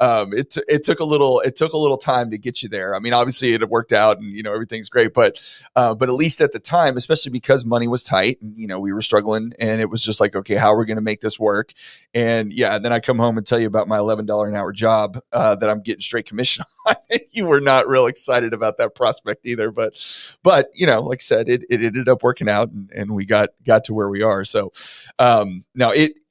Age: 30-49